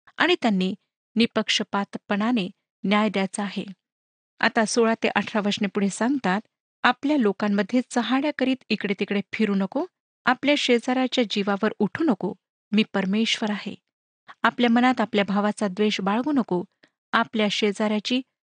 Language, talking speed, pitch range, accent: Marathi, 125 wpm, 205-255 Hz, native